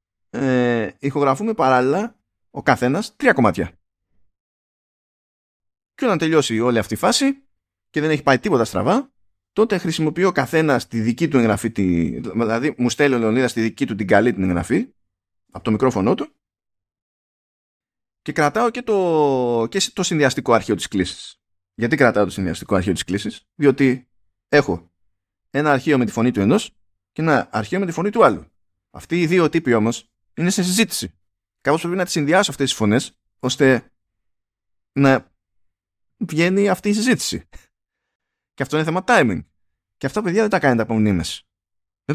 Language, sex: Greek, male